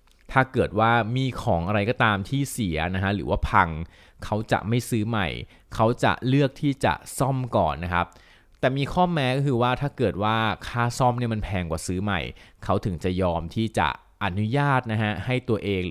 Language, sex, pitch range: Thai, male, 95-125 Hz